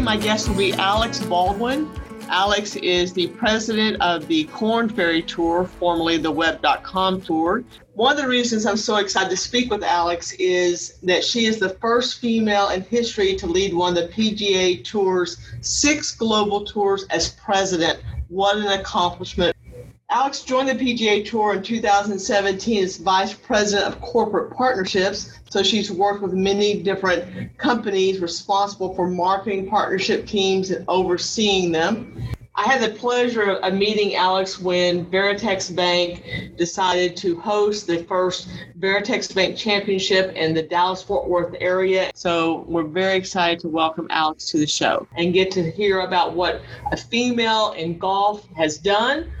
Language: English